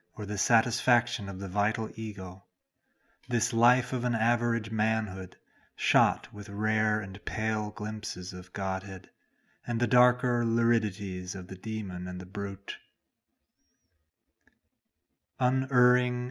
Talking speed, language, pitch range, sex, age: 120 wpm, English, 100-125 Hz, male, 30-49